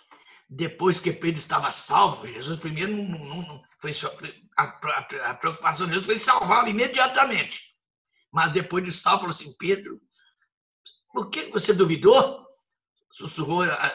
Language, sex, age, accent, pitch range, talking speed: Portuguese, male, 60-79, Brazilian, 190-300 Hz, 115 wpm